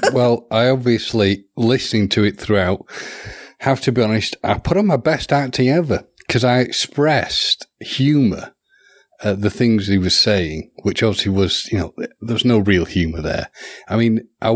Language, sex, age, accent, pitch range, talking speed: English, male, 40-59, British, 95-120 Hz, 175 wpm